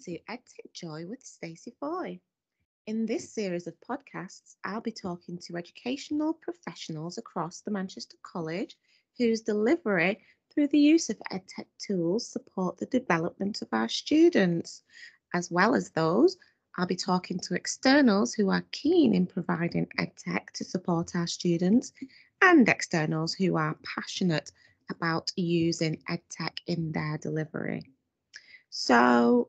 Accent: British